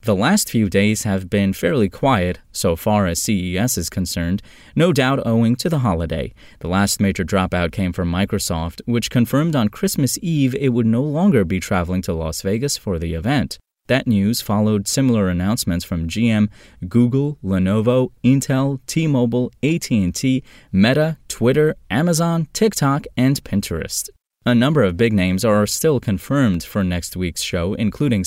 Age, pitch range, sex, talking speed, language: 20-39, 95-125 Hz, male, 160 wpm, English